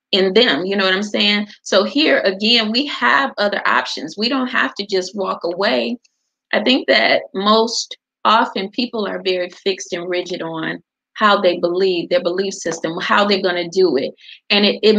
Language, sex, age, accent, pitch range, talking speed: English, female, 30-49, American, 185-225 Hz, 190 wpm